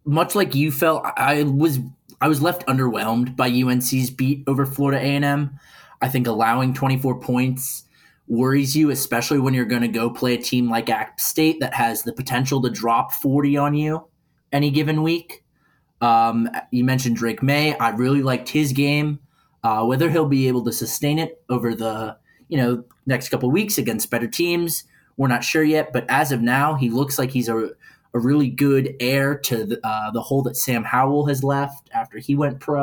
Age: 20-39